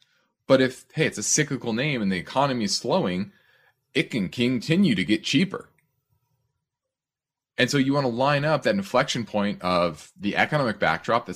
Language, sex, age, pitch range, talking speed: English, male, 30-49, 115-155 Hz, 175 wpm